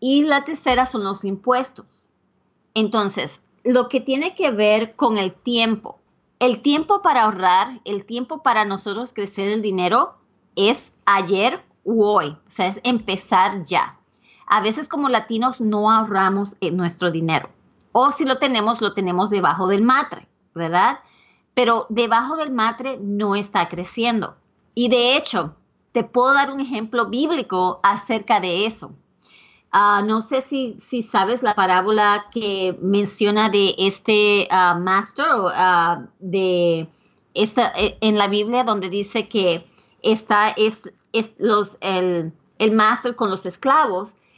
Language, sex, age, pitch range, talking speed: English, female, 30-49, 195-250 Hz, 145 wpm